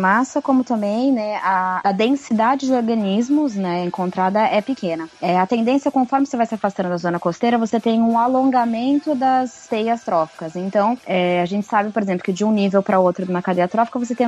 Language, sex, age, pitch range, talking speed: Portuguese, female, 20-39, 190-235 Hz, 205 wpm